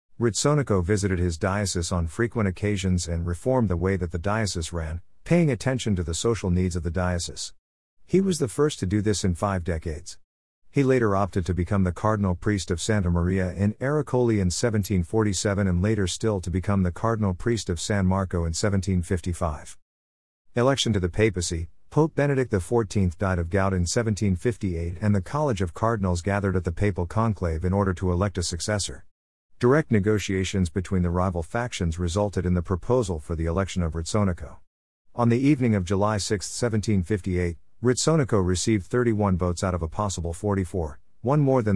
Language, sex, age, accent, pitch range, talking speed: English, male, 50-69, American, 90-110 Hz, 180 wpm